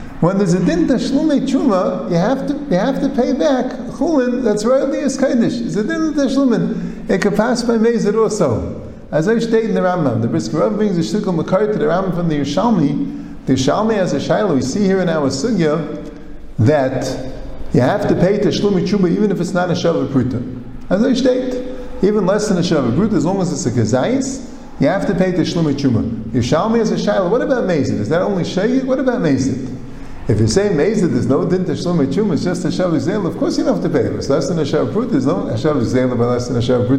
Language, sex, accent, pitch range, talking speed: English, male, American, 150-225 Hz, 220 wpm